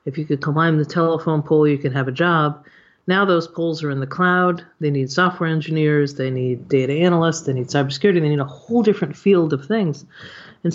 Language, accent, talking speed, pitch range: English, American, 220 wpm, 150-185 Hz